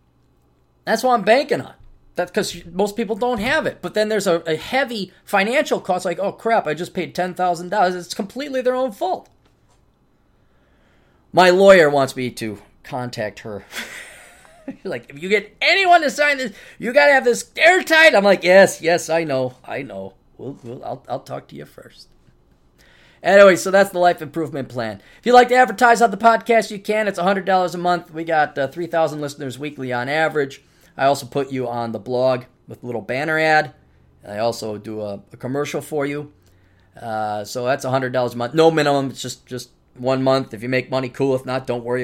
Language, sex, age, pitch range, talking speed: English, male, 30-49, 115-185 Hz, 205 wpm